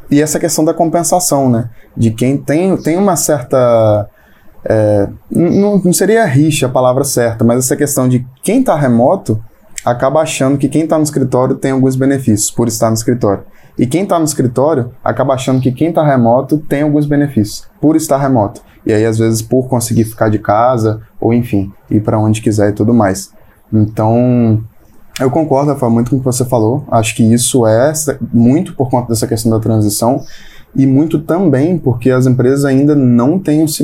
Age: 10-29